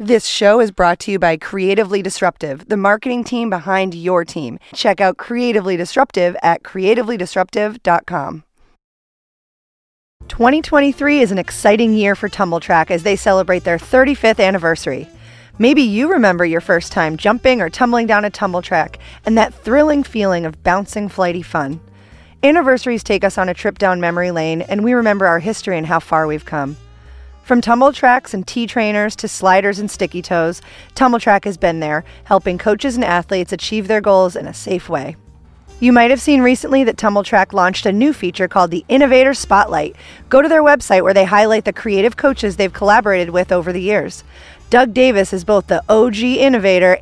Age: 30-49